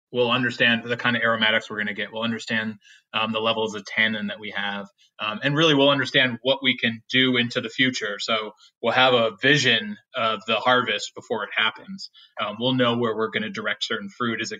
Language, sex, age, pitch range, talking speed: English, male, 20-39, 110-130 Hz, 225 wpm